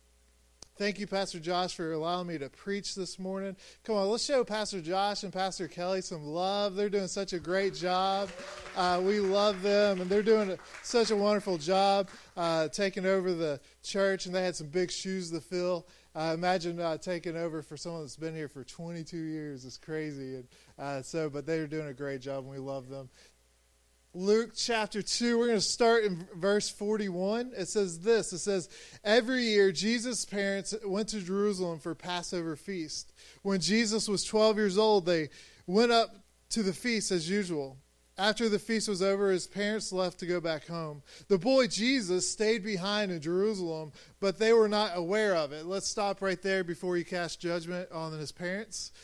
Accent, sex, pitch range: American, male, 175-215 Hz